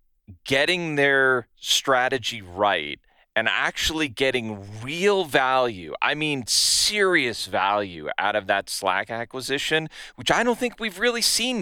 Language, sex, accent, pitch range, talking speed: English, male, American, 105-150 Hz, 130 wpm